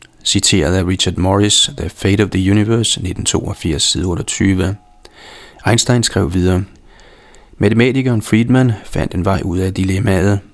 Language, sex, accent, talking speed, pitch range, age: Danish, male, native, 130 wpm, 95-115 Hz, 30-49